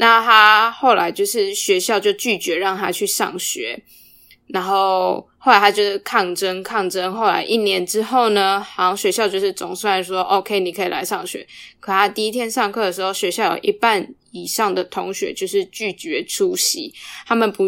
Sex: female